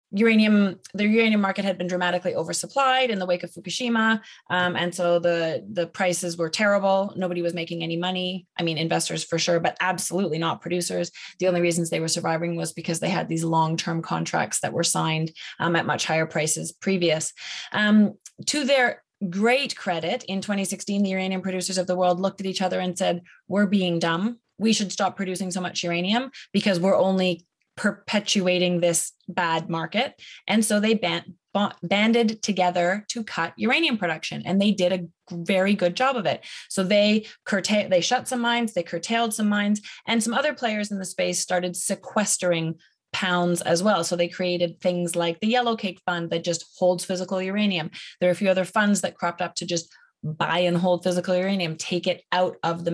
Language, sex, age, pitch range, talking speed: English, female, 20-39, 175-205 Hz, 190 wpm